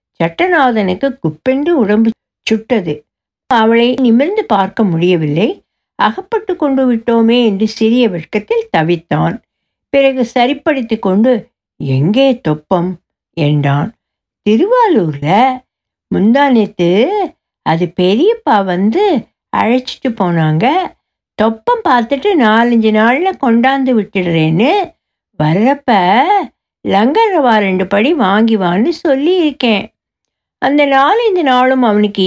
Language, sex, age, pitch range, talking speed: Tamil, female, 60-79, 195-275 Hz, 85 wpm